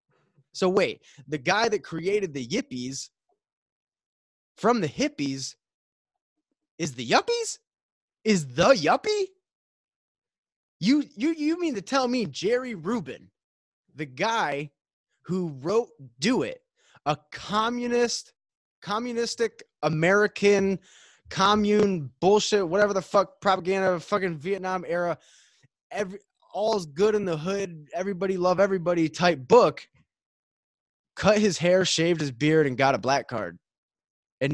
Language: English